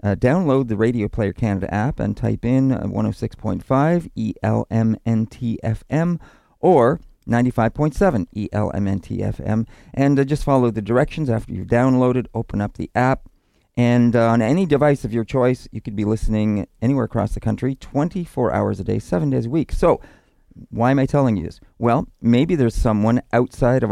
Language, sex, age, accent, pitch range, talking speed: English, male, 40-59, American, 105-130 Hz, 165 wpm